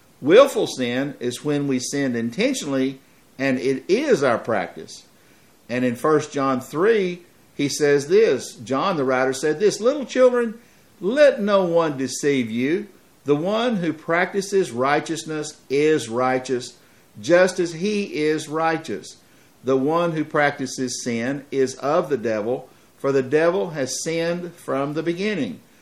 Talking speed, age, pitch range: 140 wpm, 50-69, 130-175 Hz